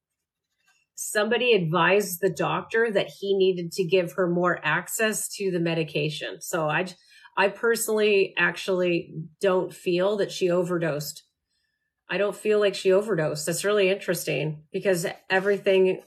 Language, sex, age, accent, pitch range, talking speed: English, female, 30-49, American, 170-195 Hz, 135 wpm